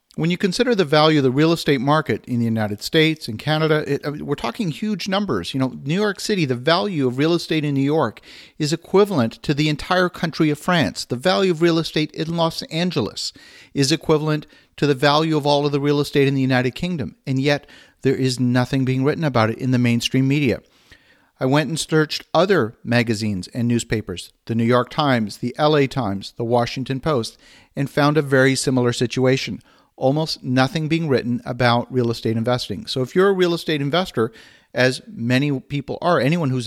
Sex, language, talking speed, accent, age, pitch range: male, English, 200 wpm, American, 50-69, 125-160 Hz